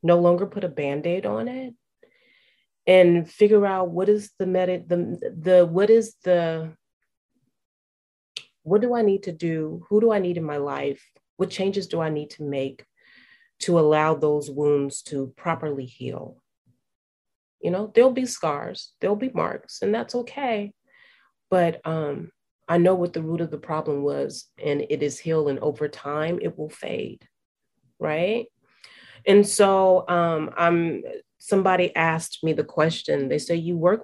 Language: English